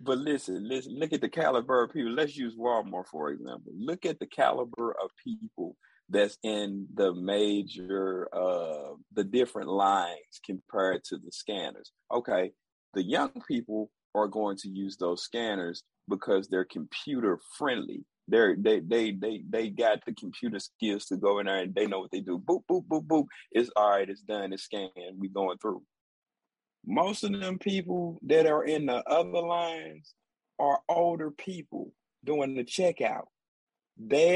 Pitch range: 105-155 Hz